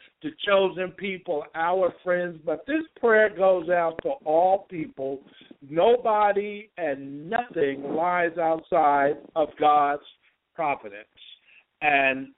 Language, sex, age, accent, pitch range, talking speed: English, male, 60-79, American, 150-190 Hz, 105 wpm